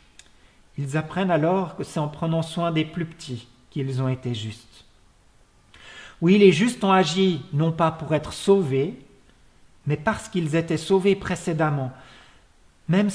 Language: French